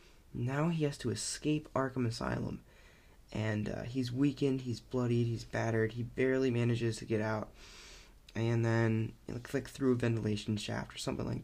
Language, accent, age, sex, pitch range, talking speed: English, American, 20-39, male, 110-130 Hz, 170 wpm